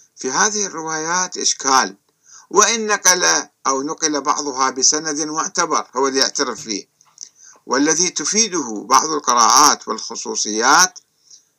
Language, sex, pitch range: Arabic, male, 135-195 Hz